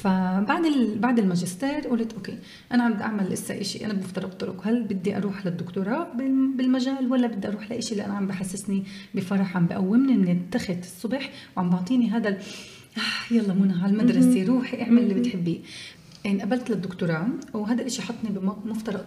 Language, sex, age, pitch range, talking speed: Arabic, female, 30-49, 185-230 Hz, 160 wpm